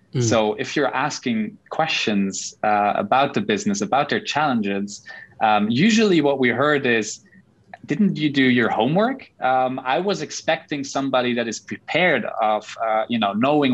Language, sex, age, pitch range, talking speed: English, male, 20-39, 110-145 Hz, 155 wpm